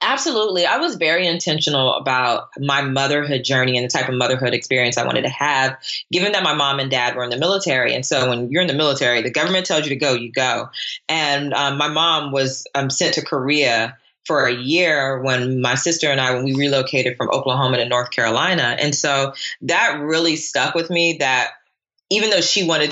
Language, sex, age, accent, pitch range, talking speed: English, female, 20-39, American, 135-160 Hz, 210 wpm